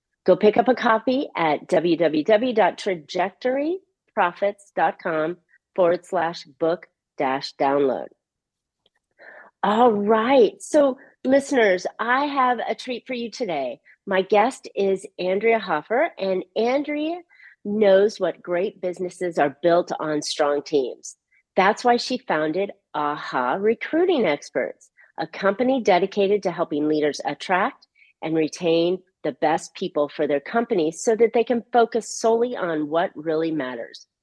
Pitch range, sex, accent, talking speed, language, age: 165-235 Hz, female, American, 125 wpm, English, 40-59